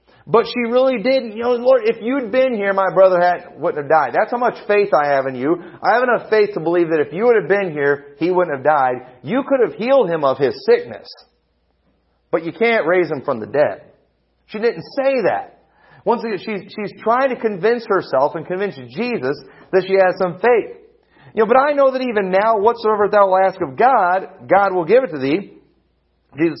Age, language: 40-59, English